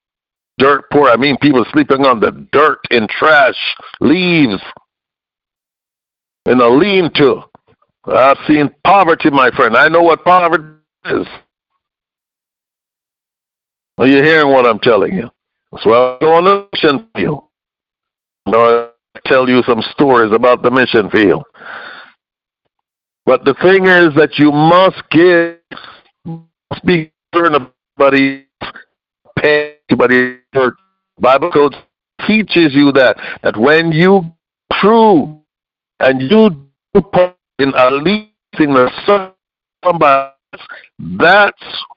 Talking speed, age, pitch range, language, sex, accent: 120 wpm, 60-79, 135-190 Hz, English, male, American